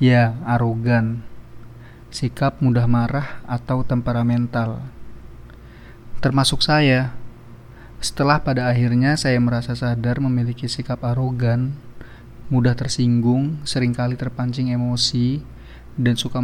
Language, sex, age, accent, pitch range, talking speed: Indonesian, male, 30-49, native, 120-130 Hz, 90 wpm